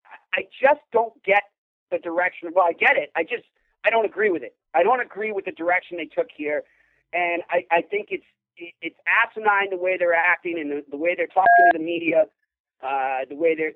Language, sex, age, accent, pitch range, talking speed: English, male, 40-59, American, 165-265 Hz, 220 wpm